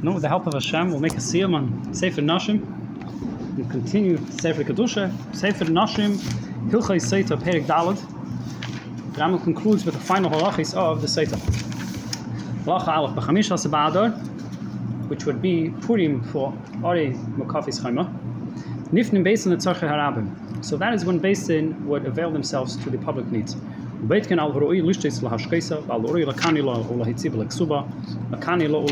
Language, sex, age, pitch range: English, male, 30-49, 140-180 Hz